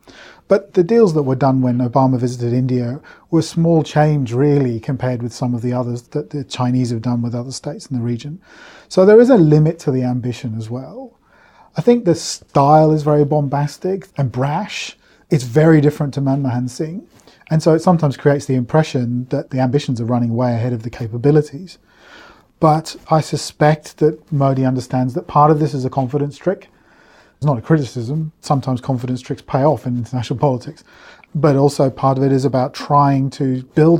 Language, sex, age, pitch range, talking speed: English, male, 40-59, 125-155 Hz, 190 wpm